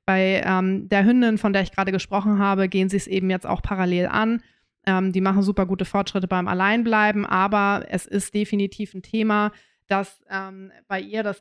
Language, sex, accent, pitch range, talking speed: German, female, German, 185-210 Hz, 195 wpm